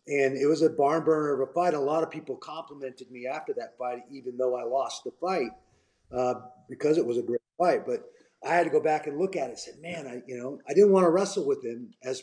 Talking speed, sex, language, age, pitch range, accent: 270 wpm, male, English, 30-49, 130-165 Hz, American